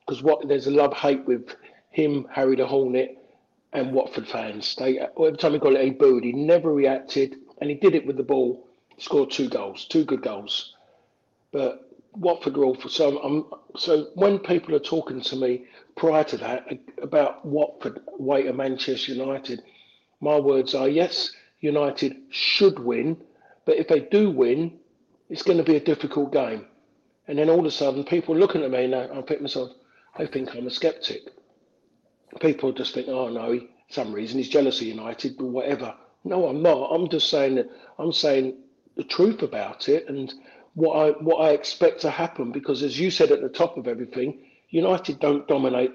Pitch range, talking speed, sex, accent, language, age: 130-165 Hz, 190 wpm, male, British, English, 40-59